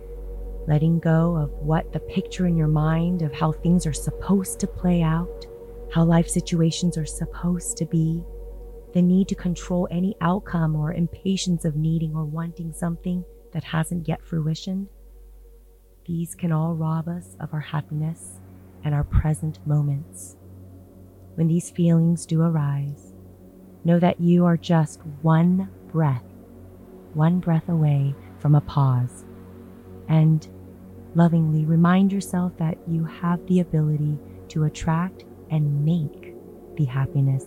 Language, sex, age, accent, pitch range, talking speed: English, female, 30-49, American, 115-170 Hz, 140 wpm